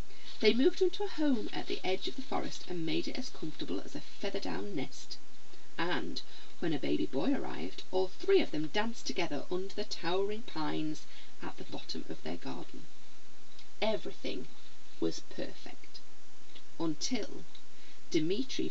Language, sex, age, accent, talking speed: English, female, 40-59, British, 150 wpm